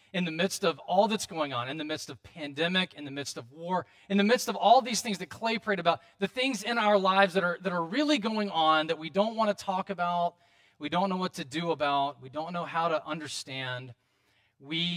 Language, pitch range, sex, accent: English, 155-210 Hz, male, American